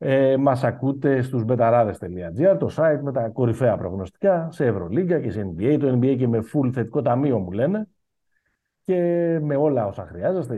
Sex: male